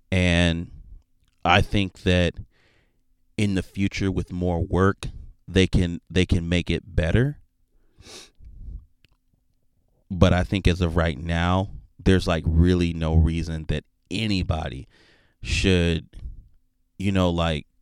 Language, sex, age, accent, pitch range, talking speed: English, male, 30-49, American, 85-105 Hz, 120 wpm